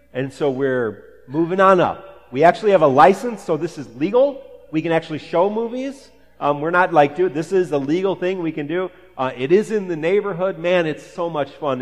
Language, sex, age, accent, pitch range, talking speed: English, male, 30-49, American, 130-180 Hz, 225 wpm